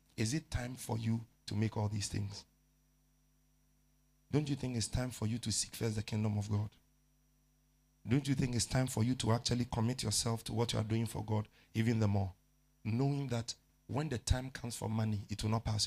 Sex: male